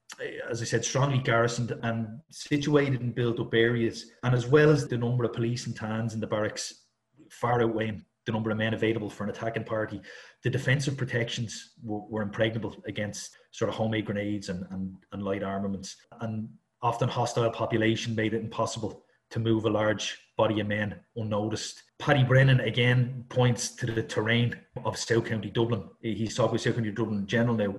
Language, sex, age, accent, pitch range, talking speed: English, male, 30-49, Irish, 110-125 Hz, 180 wpm